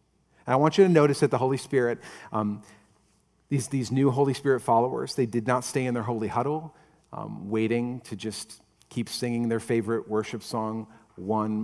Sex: male